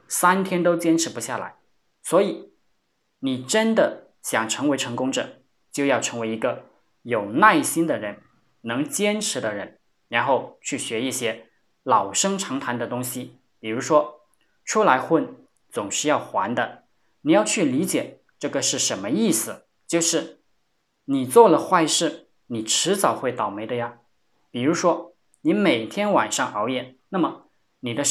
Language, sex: Chinese, male